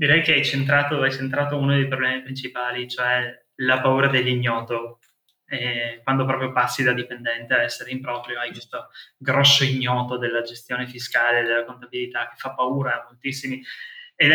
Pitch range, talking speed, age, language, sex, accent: 125-140 Hz, 160 wpm, 20-39, Italian, male, native